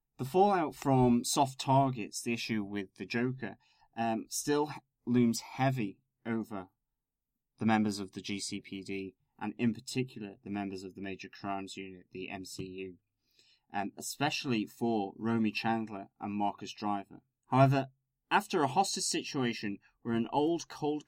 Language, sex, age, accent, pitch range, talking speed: English, male, 20-39, British, 105-130 Hz, 140 wpm